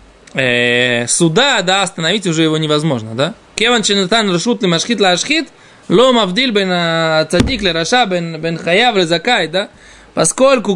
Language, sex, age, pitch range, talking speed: Russian, male, 20-39, 160-210 Hz, 105 wpm